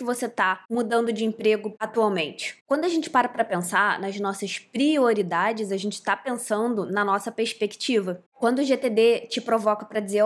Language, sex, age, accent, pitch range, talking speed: Portuguese, female, 20-39, Brazilian, 215-260 Hz, 170 wpm